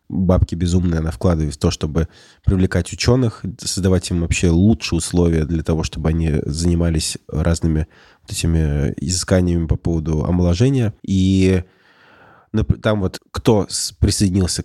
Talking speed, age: 125 wpm, 20-39